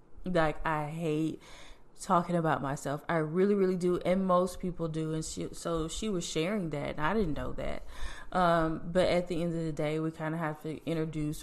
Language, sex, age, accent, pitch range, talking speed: English, female, 20-39, American, 155-175 Hz, 210 wpm